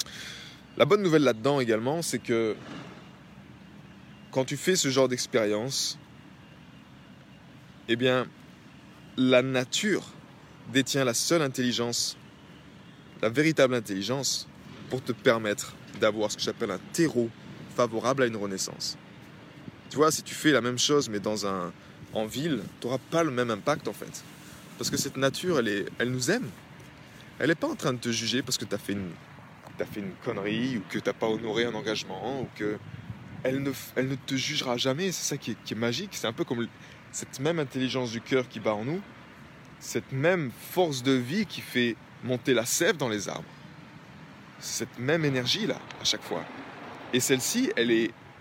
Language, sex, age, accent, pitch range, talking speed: French, male, 20-39, French, 115-140 Hz, 180 wpm